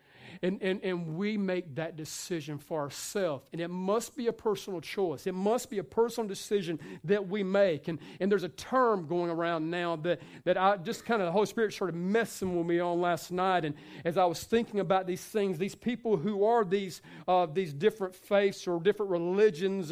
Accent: American